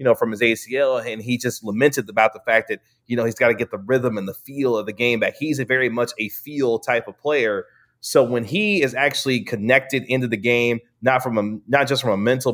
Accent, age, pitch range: American, 30-49, 110-125 Hz